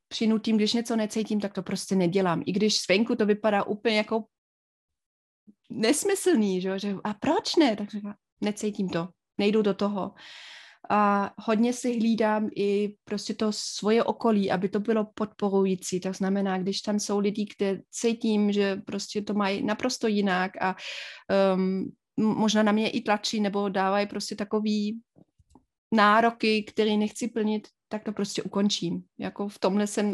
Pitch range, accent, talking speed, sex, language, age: 200-225 Hz, native, 150 wpm, female, Czech, 30-49